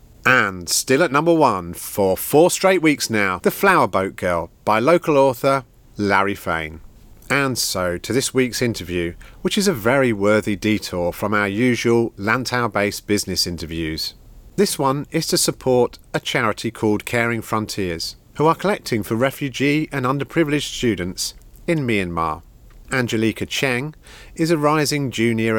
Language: English